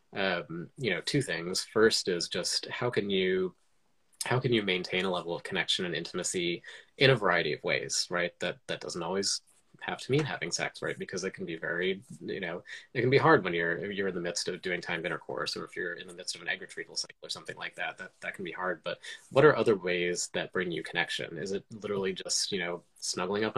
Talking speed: 240 wpm